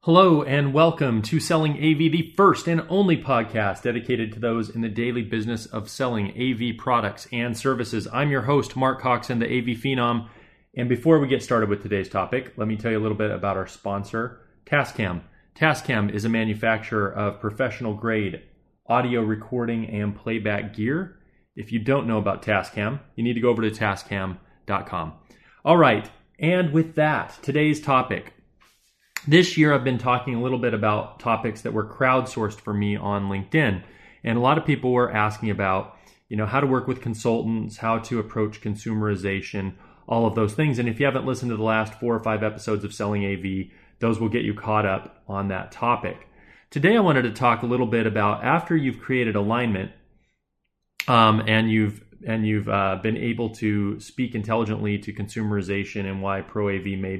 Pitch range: 105-125 Hz